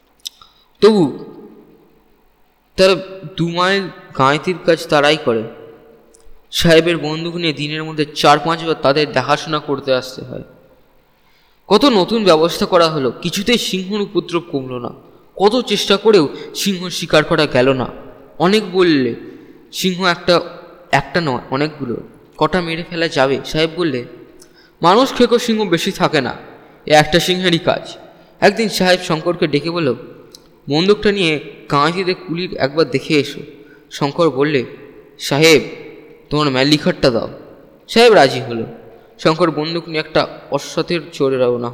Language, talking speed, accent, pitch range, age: Bengali, 95 wpm, native, 140-175 Hz, 20-39